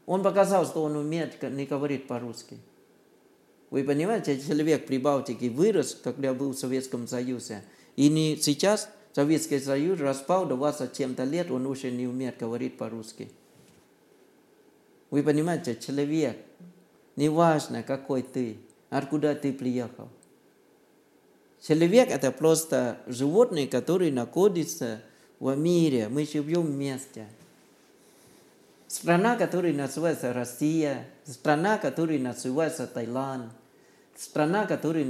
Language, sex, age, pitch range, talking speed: Russian, male, 50-69, 125-165 Hz, 110 wpm